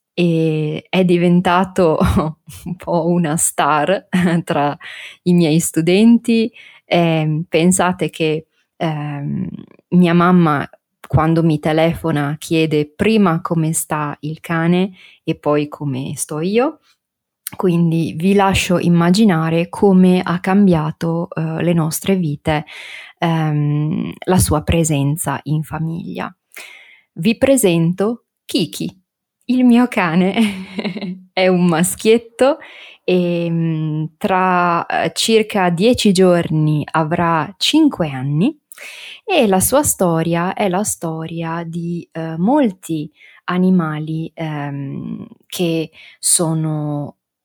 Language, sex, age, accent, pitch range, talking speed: Italian, female, 20-39, native, 160-190 Hz, 100 wpm